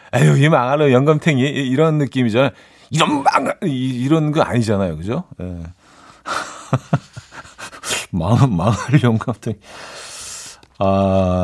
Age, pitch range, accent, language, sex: 40-59, 95-140 Hz, native, Korean, male